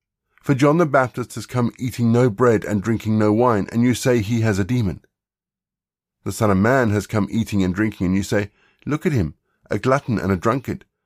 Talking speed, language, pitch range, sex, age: 215 wpm, English, 95-120 Hz, male, 50-69